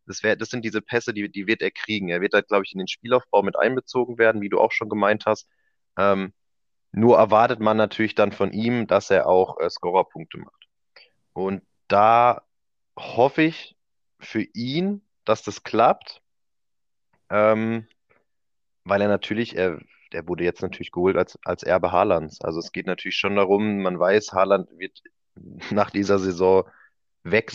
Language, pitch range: German, 95-110 Hz